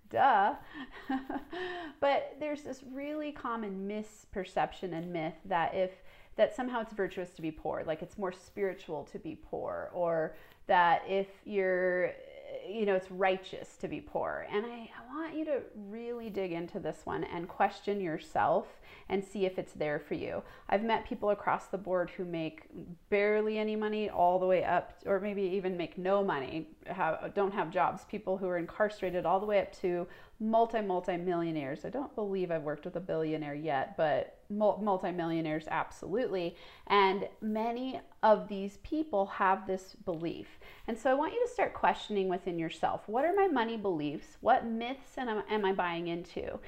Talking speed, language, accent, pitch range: 170 wpm, English, American, 180-230 Hz